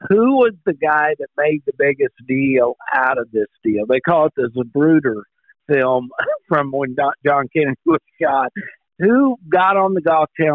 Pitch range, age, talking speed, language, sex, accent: 145-185 Hz, 50-69, 175 wpm, English, male, American